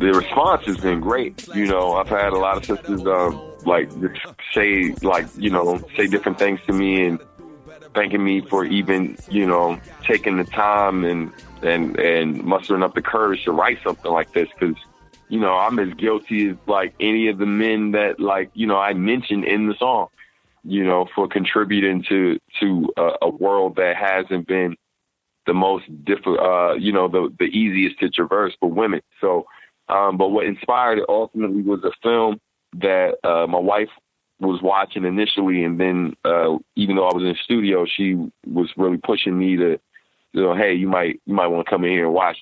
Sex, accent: male, American